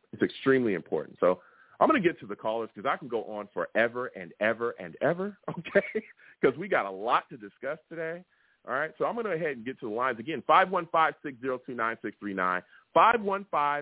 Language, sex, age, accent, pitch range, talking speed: English, male, 40-59, American, 110-160 Hz, 195 wpm